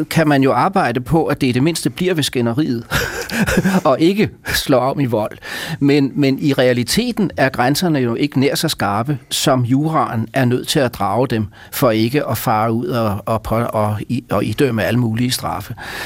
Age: 40-59